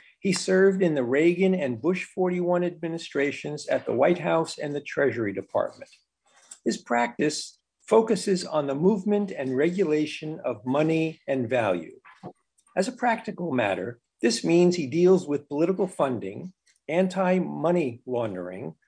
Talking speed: 135 wpm